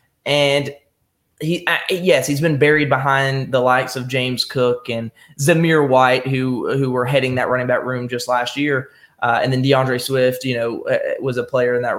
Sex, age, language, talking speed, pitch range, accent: male, 20-39, English, 200 wpm, 125-160 Hz, American